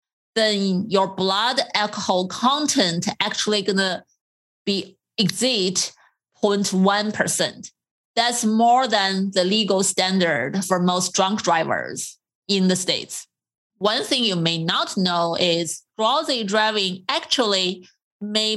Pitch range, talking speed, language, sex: 180-215 Hz, 115 wpm, English, female